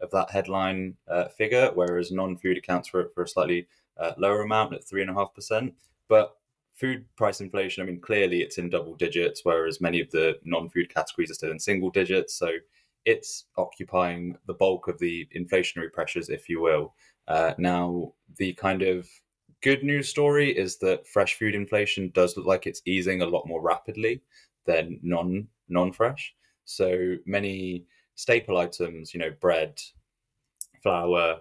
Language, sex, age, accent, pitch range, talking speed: English, male, 20-39, British, 90-105 Hz, 165 wpm